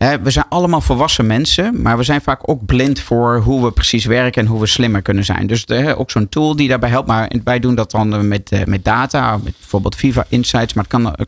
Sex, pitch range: male, 110-145 Hz